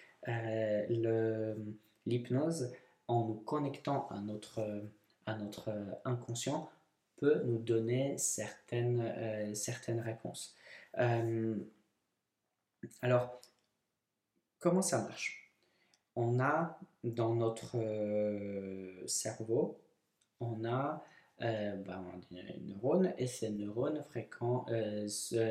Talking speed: 80 wpm